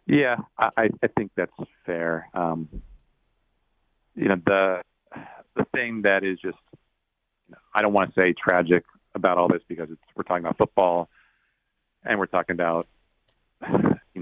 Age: 40-59